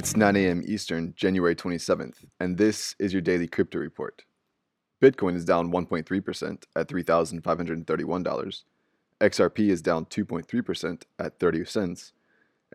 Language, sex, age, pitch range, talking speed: English, male, 20-39, 85-95 Hz, 120 wpm